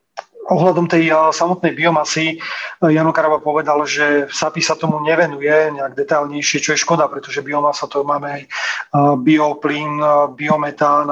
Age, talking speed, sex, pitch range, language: 30-49, 125 wpm, male, 145-155 Hz, Slovak